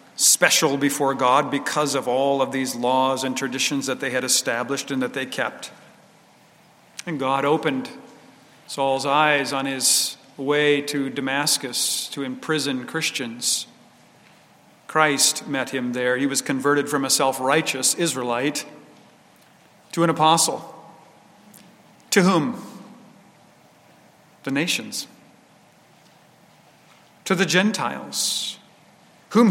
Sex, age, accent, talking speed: male, 50-69, American, 110 wpm